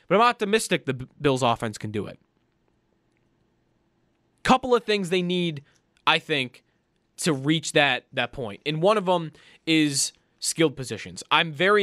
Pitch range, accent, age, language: 135-180 Hz, American, 20-39, English